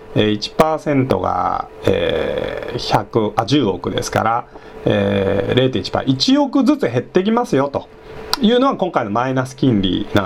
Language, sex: Japanese, male